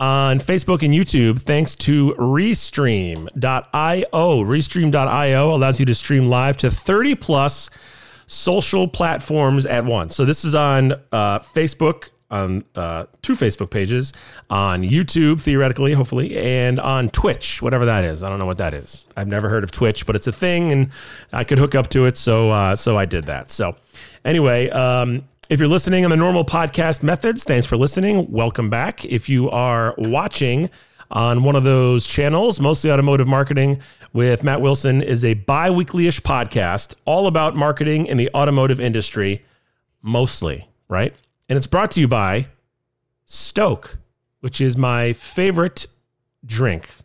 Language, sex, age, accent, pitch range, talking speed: English, male, 40-59, American, 115-145 Hz, 160 wpm